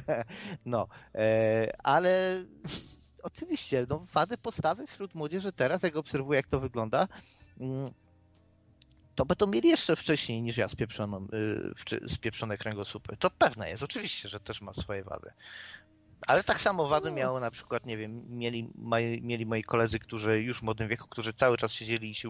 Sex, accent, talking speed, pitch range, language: male, native, 160 wpm, 110-135 Hz, Polish